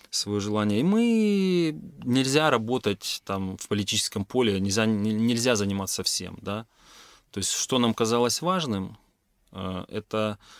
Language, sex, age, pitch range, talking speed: Ukrainian, male, 30-49, 95-115 Hz, 125 wpm